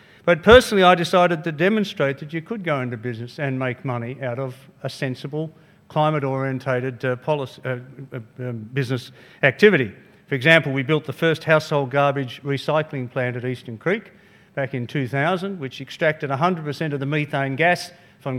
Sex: male